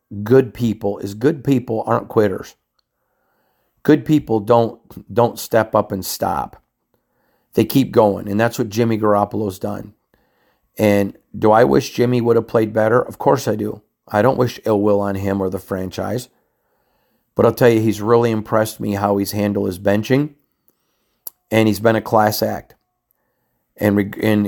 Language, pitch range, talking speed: English, 100-115 Hz, 165 wpm